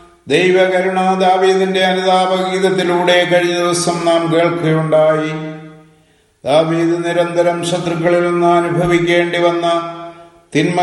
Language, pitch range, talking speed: English, 155-175 Hz, 70 wpm